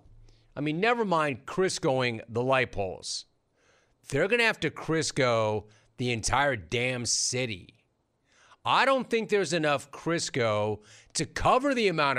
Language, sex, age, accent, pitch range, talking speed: English, male, 40-59, American, 110-150 Hz, 140 wpm